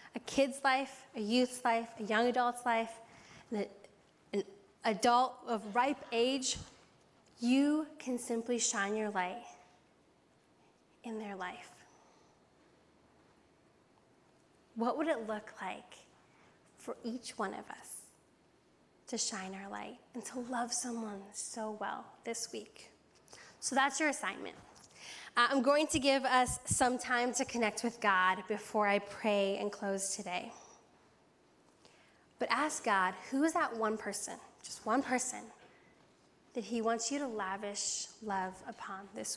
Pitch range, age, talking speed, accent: 210-250 Hz, 10-29, 135 wpm, American